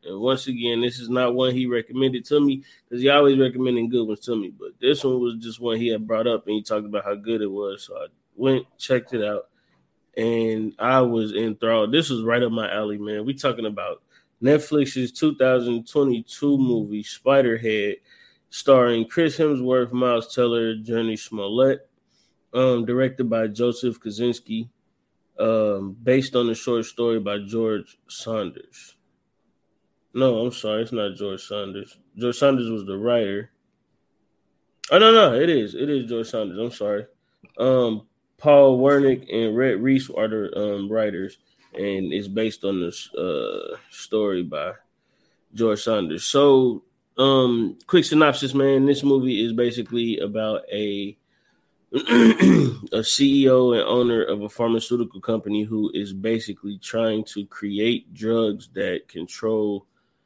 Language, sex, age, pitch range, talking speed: English, male, 20-39, 110-130 Hz, 150 wpm